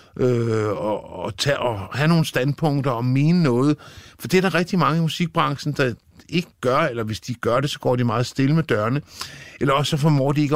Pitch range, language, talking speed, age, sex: 105-145 Hz, Danish, 225 wpm, 60-79, male